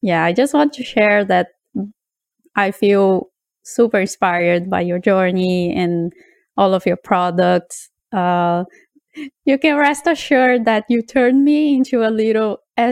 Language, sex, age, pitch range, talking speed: English, female, 20-39, 185-255 Hz, 145 wpm